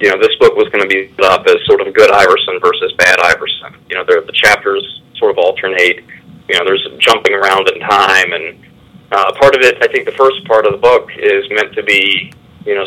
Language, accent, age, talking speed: English, American, 40-59, 235 wpm